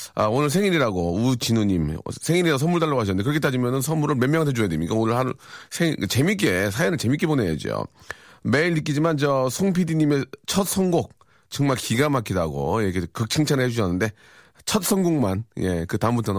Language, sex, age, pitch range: Korean, male, 40-59, 105-150 Hz